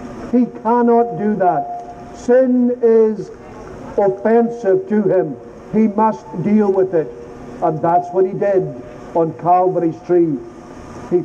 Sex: male